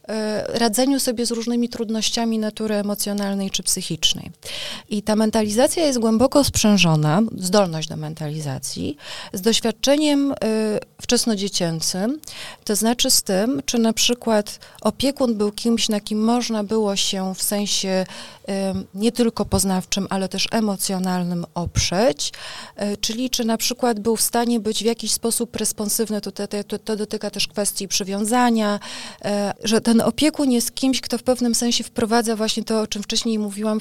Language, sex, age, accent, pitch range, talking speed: Polish, female, 30-49, native, 205-240 Hz, 145 wpm